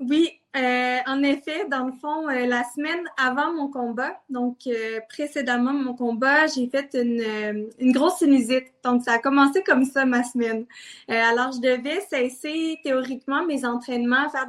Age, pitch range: 20-39, 240-275 Hz